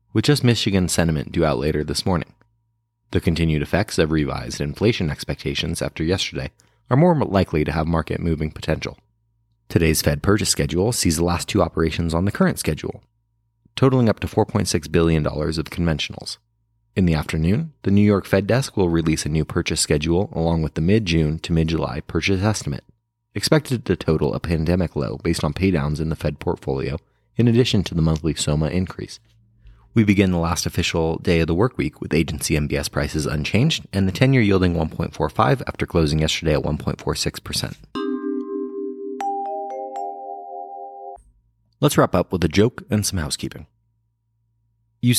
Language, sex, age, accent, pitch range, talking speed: English, male, 30-49, American, 80-115 Hz, 160 wpm